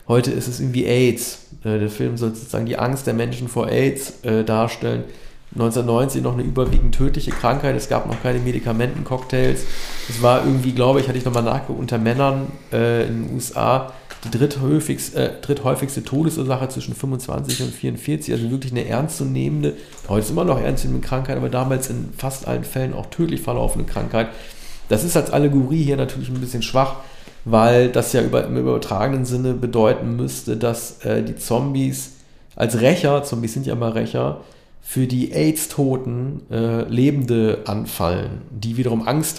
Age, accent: 40-59, German